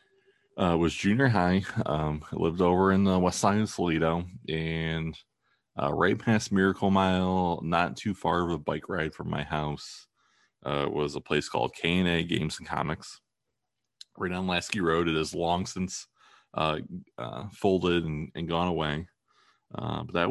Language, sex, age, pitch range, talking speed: English, male, 20-39, 80-100 Hz, 165 wpm